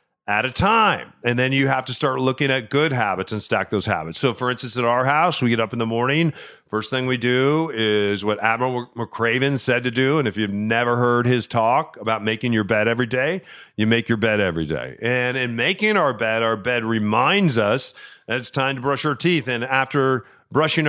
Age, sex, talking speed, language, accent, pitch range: 40-59, male, 225 wpm, English, American, 120-155 Hz